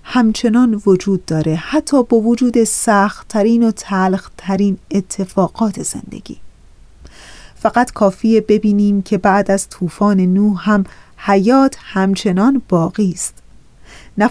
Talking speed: 115 wpm